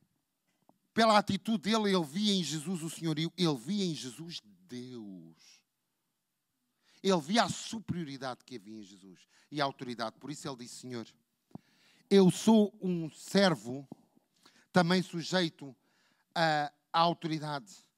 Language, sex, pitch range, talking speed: Portuguese, male, 145-220 Hz, 125 wpm